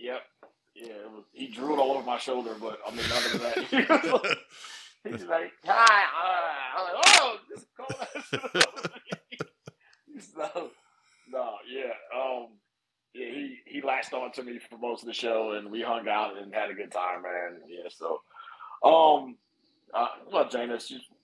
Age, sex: 30-49, male